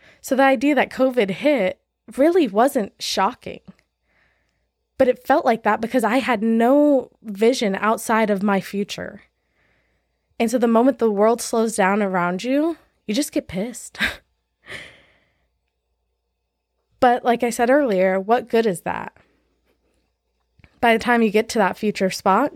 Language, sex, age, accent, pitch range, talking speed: English, female, 20-39, American, 195-255 Hz, 145 wpm